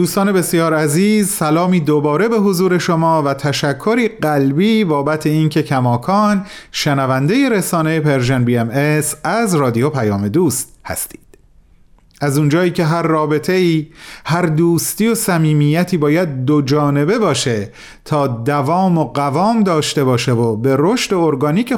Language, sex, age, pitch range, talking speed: Persian, male, 40-59, 140-185 Hz, 130 wpm